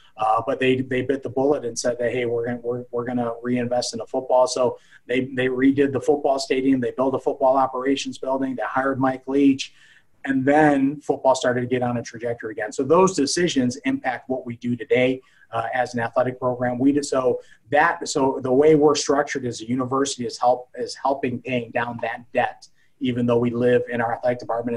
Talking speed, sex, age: 220 wpm, male, 30-49